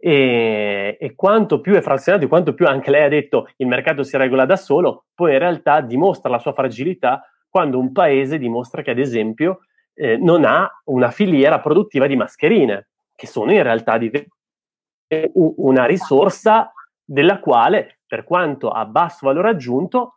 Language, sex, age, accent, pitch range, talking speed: Italian, male, 30-49, native, 120-195 Hz, 165 wpm